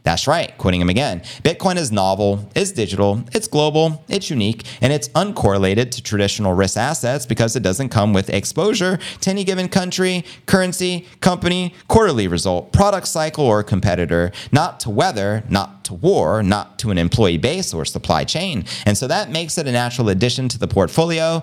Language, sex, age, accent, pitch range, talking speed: English, male, 30-49, American, 95-135 Hz, 180 wpm